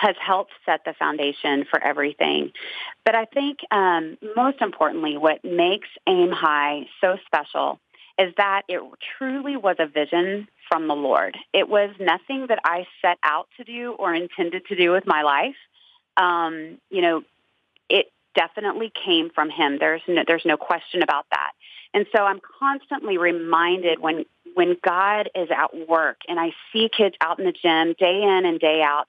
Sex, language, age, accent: female, English, 30-49, American